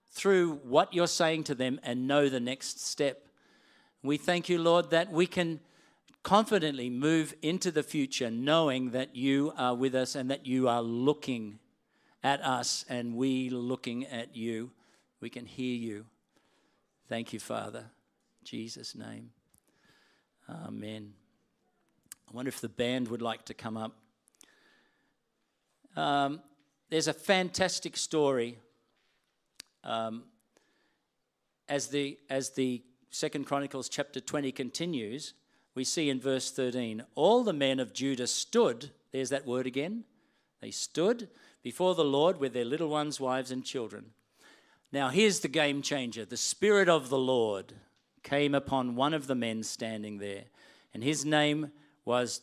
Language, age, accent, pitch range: English, 50-69, Australian, 125-155 Hz